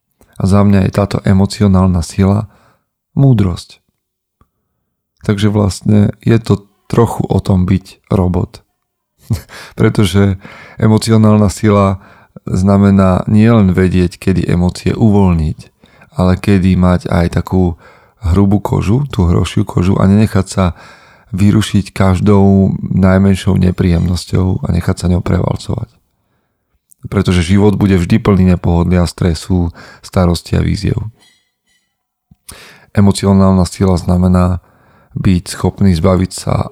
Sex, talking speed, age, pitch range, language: male, 110 wpm, 40-59, 90-105 Hz, Slovak